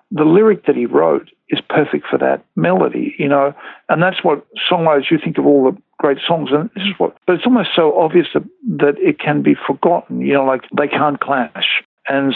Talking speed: 220 wpm